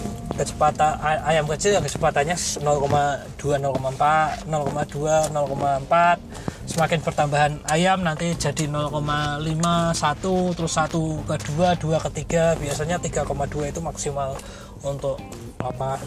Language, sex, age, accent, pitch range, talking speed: Indonesian, male, 20-39, native, 140-160 Hz, 100 wpm